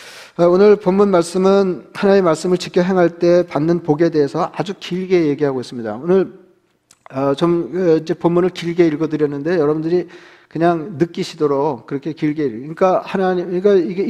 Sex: male